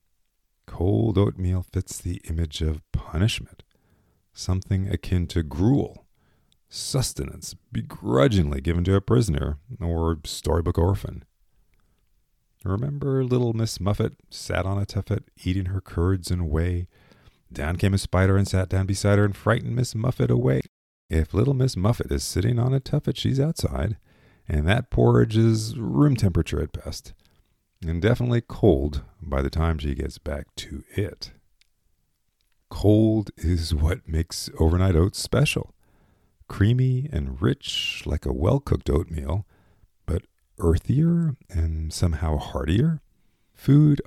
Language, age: English, 40-59